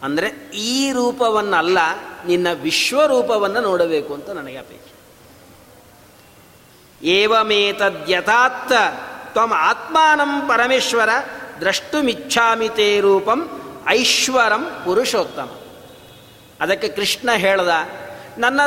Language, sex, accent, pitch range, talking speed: Kannada, male, native, 215-290 Hz, 70 wpm